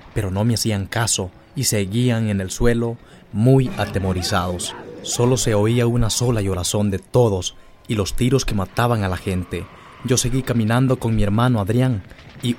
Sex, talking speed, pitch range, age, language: male, 170 wpm, 100-130 Hz, 30-49, English